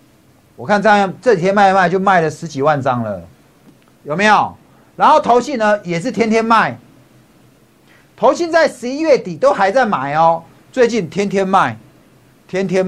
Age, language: 50-69, Chinese